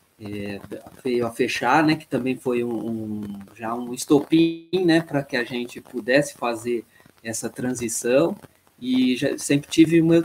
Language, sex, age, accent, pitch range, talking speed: Portuguese, male, 20-39, Brazilian, 110-135 Hz, 160 wpm